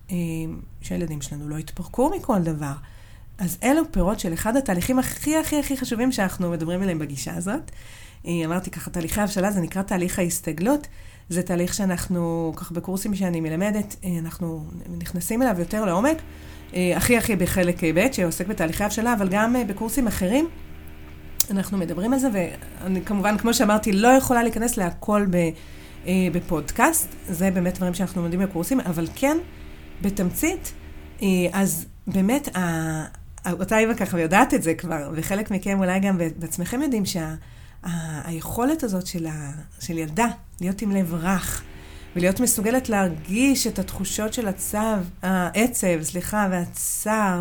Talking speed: 135 wpm